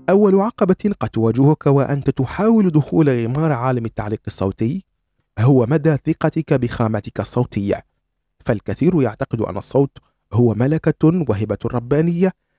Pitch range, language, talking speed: 110-155 Hz, Arabic, 115 wpm